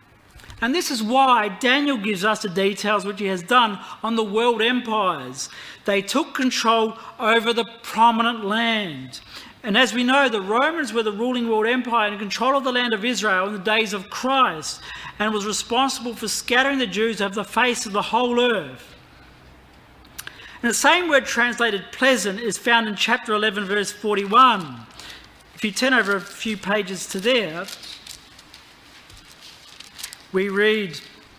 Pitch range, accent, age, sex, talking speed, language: 205-245 Hz, Australian, 40-59, male, 165 wpm, English